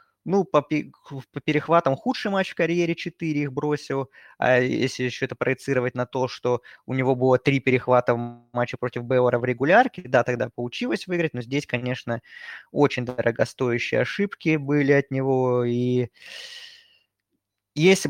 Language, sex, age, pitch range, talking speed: Russian, male, 20-39, 125-155 Hz, 150 wpm